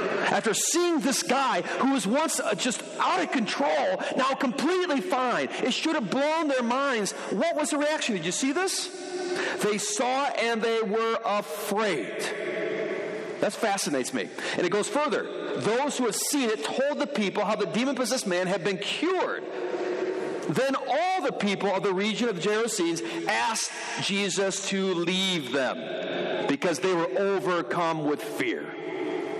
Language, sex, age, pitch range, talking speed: English, male, 50-69, 190-290 Hz, 155 wpm